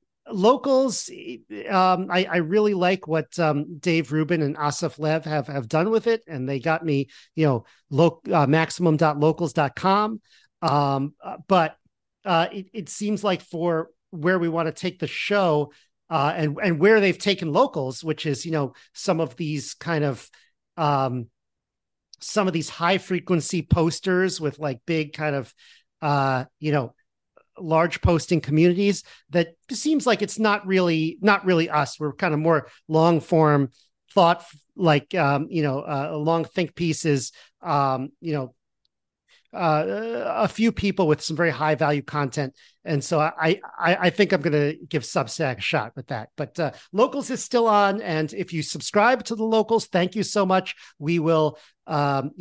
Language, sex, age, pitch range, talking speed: English, male, 40-59, 145-185 Hz, 175 wpm